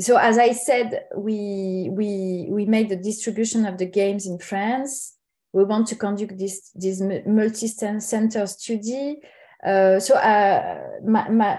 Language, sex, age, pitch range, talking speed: English, female, 20-39, 190-225 Hz, 145 wpm